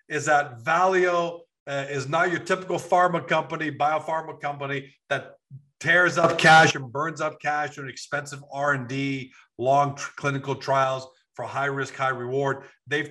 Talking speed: 155 wpm